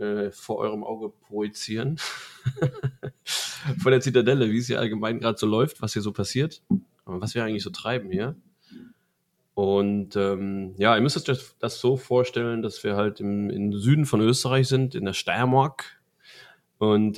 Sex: male